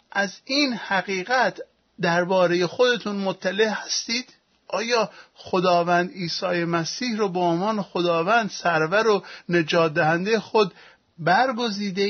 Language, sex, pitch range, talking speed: Persian, male, 175-225 Hz, 105 wpm